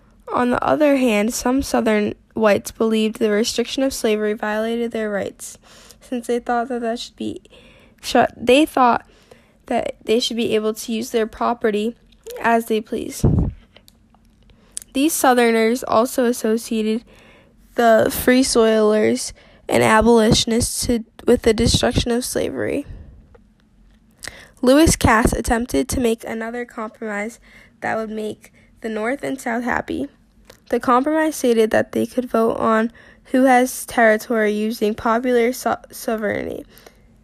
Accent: American